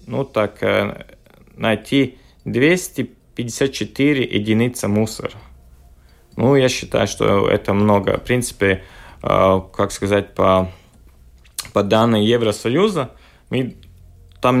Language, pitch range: Russian, 95-115 Hz